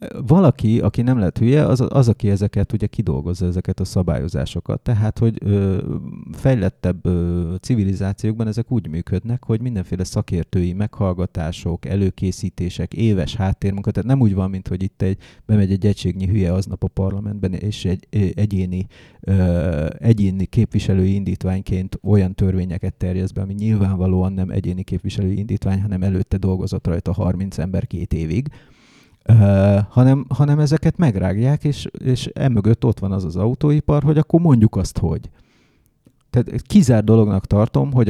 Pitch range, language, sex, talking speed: 95-115 Hz, English, male, 140 wpm